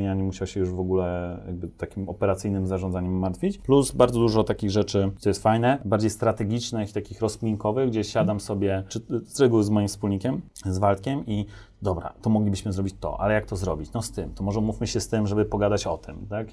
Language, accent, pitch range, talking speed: Polish, native, 95-110 Hz, 210 wpm